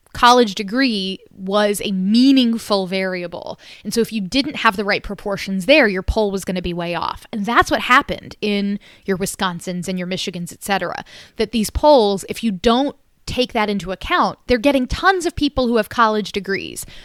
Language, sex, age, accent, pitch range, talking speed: English, female, 20-39, American, 195-235 Hz, 195 wpm